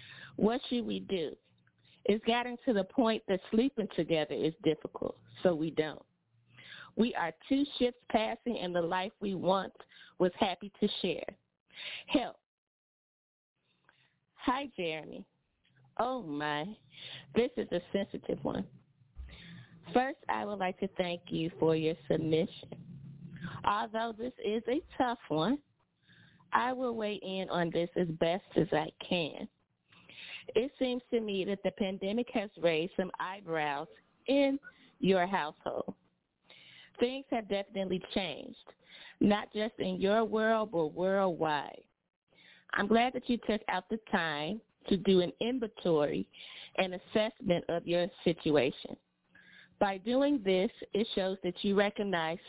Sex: female